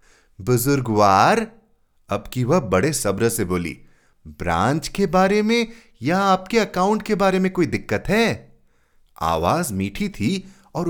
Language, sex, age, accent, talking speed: Hindi, male, 30-49, native, 140 wpm